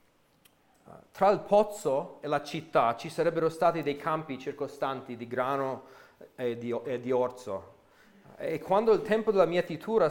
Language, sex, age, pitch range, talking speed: Italian, male, 40-59, 130-165 Hz, 150 wpm